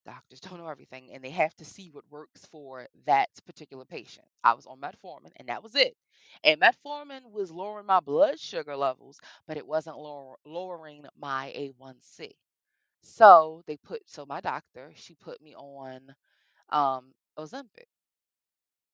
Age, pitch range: 20-39, 140-180 Hz